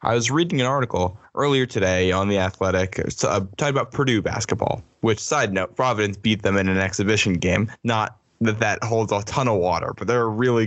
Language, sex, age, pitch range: English, male, 10-29, 105-130 Hz